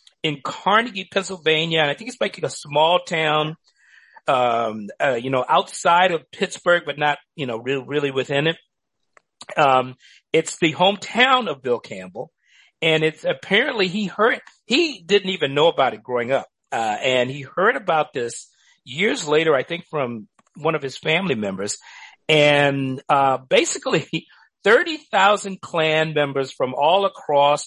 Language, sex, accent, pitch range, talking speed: English, male, American, 135-185 Hz, 155 wpm